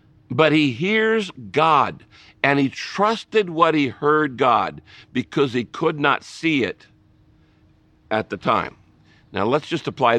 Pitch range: 110-165 Hz